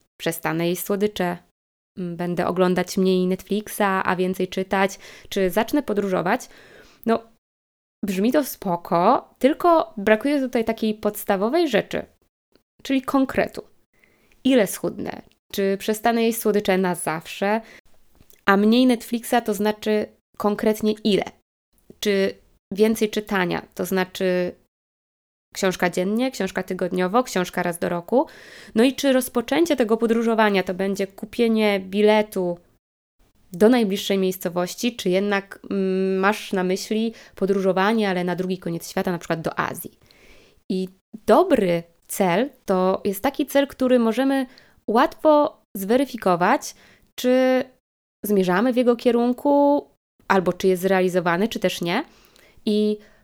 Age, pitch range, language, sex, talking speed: 20-39, 185-235 Hz, Polish, female, 120 wpm